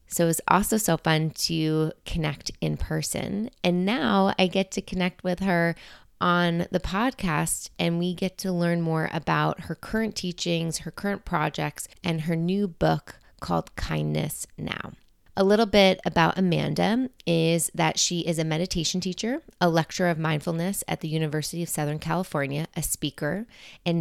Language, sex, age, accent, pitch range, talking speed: English, female, 20-39, American, 150-180 Hz, 165 wpm